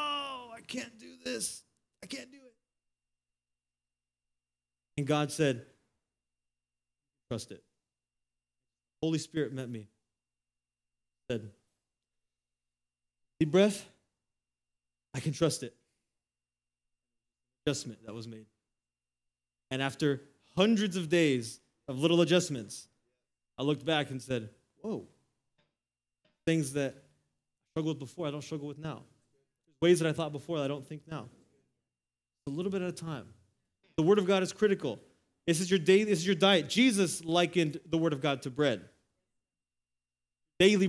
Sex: male